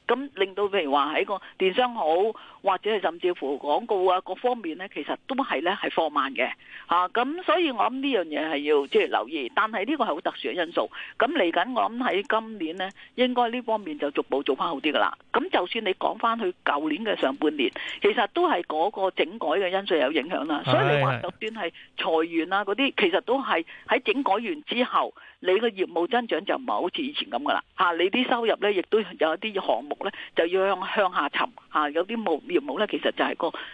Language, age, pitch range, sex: Chinese, 40-59, 185-285 Hz, female